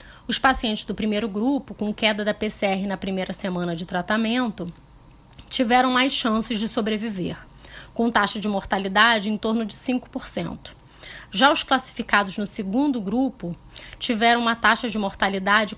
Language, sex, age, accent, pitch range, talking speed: Portuguese, female, 20-39, Brazilian, 205-240 Hz, 145 wpm